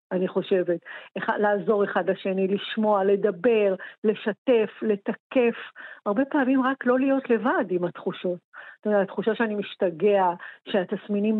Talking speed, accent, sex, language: 125 wpm, native, female, Hebrew